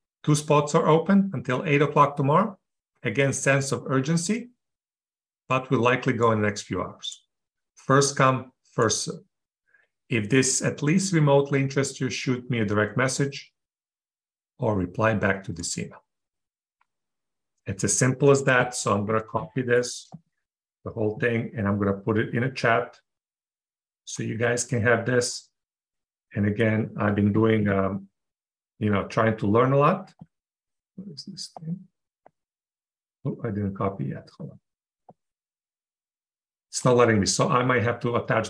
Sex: male